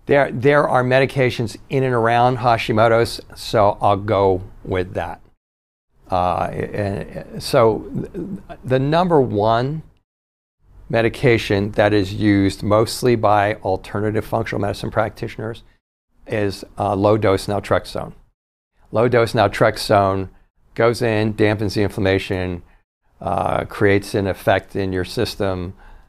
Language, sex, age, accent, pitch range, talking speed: English, male, 50-69, American, 95-115 Hz, 110 wpm